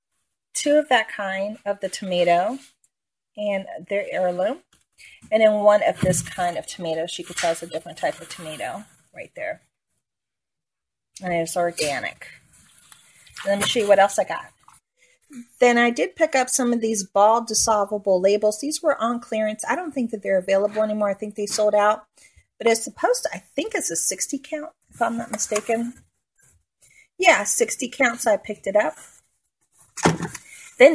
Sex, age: female, 40-59